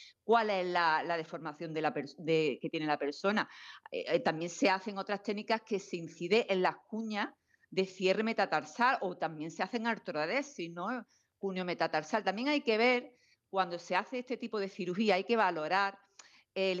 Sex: female